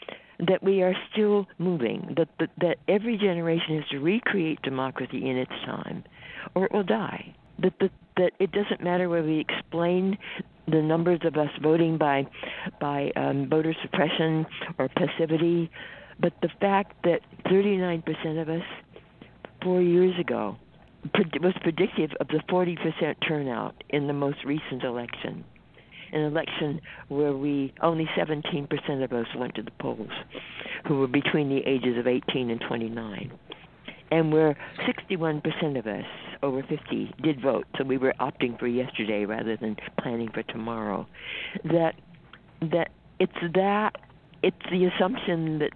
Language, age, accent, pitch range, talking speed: English, 60-79, American, 140-175 Hz, 150 wpm